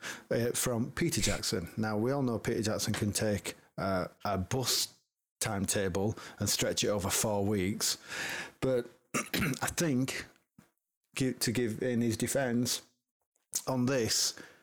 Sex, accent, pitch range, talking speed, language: male, British, 100-125 Hz, 130 wpm, English